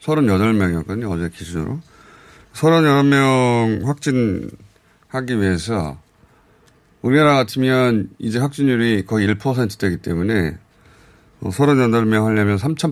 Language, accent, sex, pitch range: Korean, native, male, 100-145 Hz